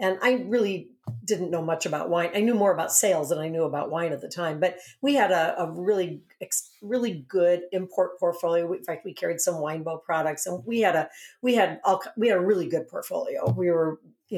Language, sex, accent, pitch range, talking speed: English, female, American, 170-220 Hz, 225 wpm